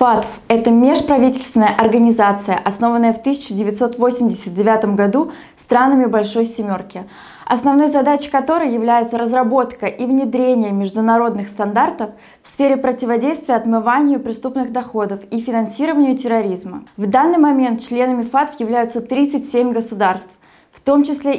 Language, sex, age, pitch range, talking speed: Russian, female, 20-39, 215-260 Hz, 110 wpm